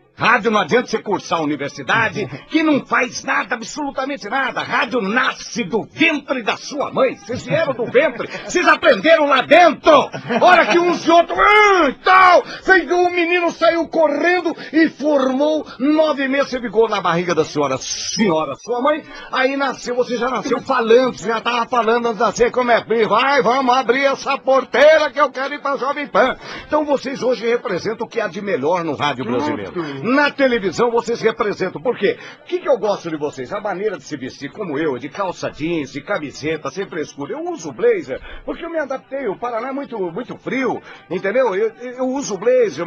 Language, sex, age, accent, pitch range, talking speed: Portuguese, male, 60-79, Brazilian, 180-290 Hz, 190 wpm